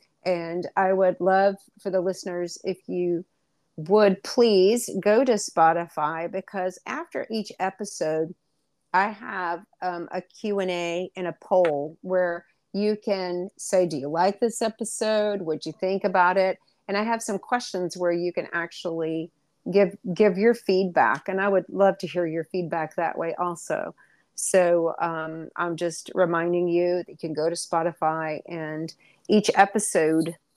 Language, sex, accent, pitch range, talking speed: English, female, American, 170-205 Hz, 160 wpm